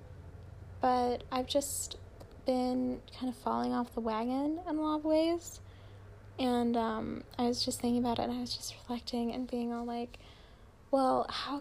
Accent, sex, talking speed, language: American, female, 175 wpm, English